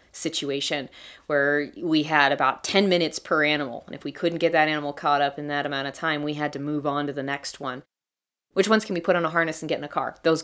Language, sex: English, female